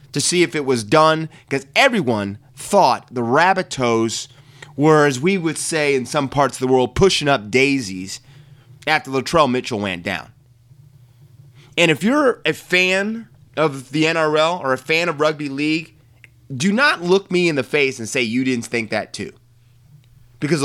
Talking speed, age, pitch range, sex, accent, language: 175 wpm, 30-49, 115-140 Hz, male, American, English